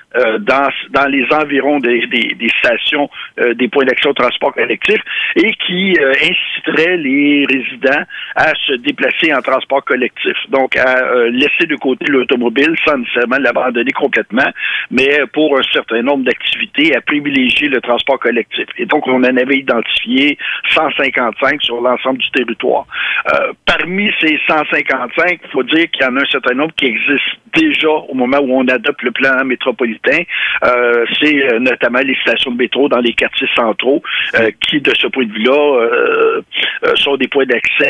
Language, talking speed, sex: French, 175 wpm, male